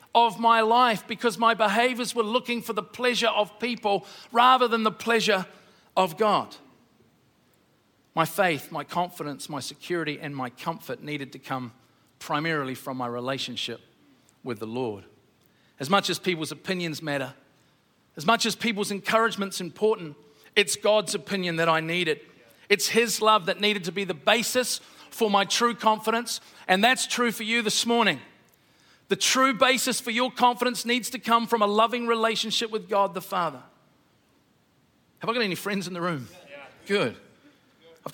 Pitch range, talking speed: 155-220 Hz, 165 wpm